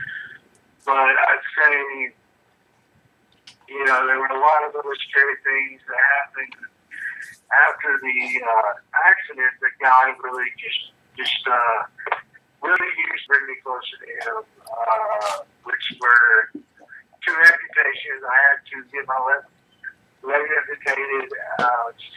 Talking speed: 130 wpm